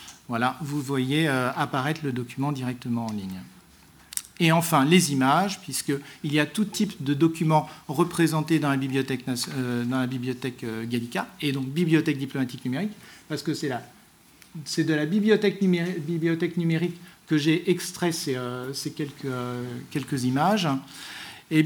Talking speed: 160 wpm